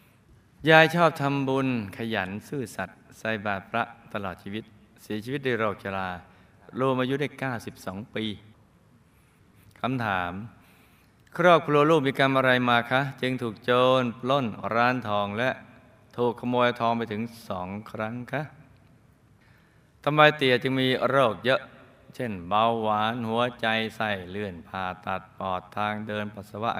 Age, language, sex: 20-39, Thai, male